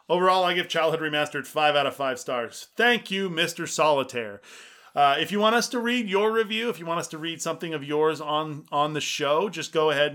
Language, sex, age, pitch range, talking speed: English, male, 30-49, 130-165 Hz, 230 wpm